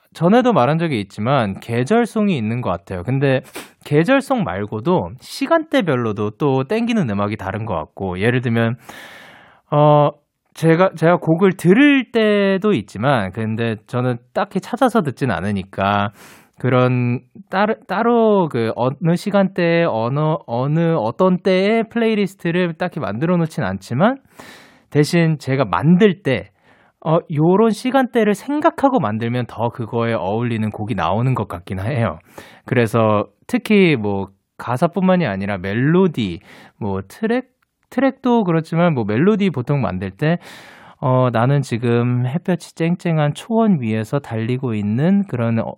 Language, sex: Korean, male